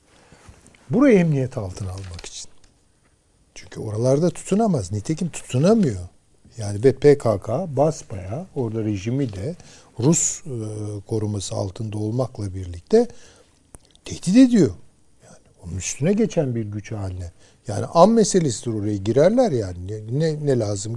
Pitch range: 105-155 Hz